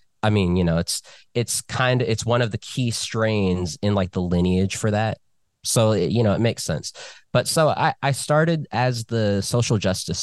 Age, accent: 20-39, American